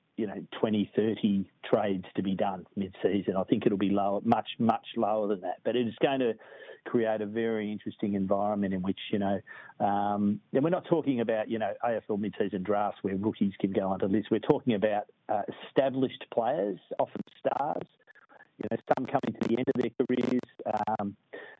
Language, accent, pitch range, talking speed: English, Australian, 105-135 Hz, 190 wpm